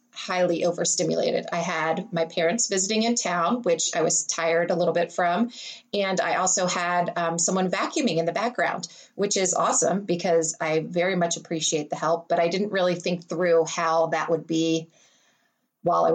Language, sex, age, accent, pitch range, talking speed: English, female, 30-49, American, 165-190 Hz, 180 wpm